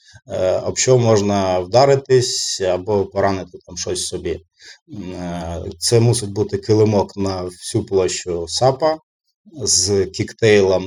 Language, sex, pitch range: Ukrainian, male, 95-130 Hz